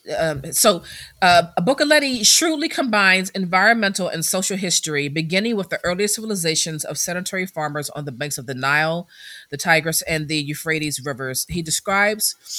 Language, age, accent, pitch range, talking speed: English, 30-49, American, 145-185 Hz, 155 wpm